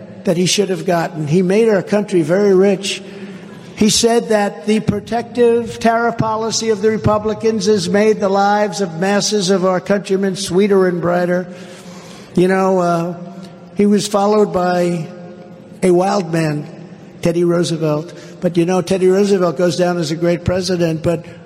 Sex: male